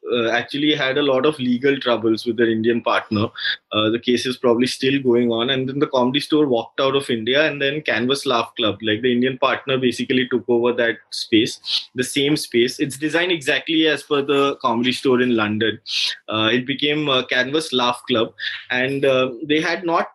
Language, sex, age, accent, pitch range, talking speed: English, male, 20-39, Indian, 120-155 Hz, 205 wpm